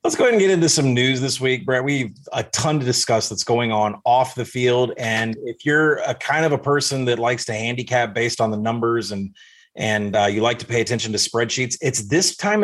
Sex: male